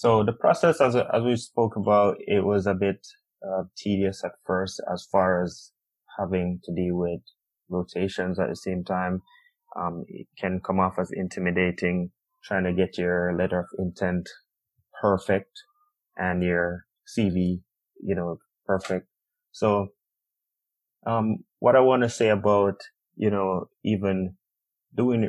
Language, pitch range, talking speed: English, 90-105 Hz, 145 wpm